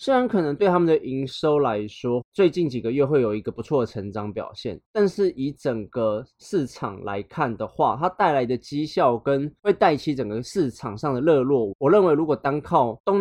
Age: 20-39